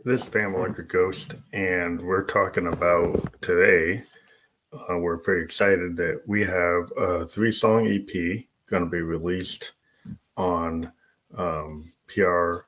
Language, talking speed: English, 135 wpm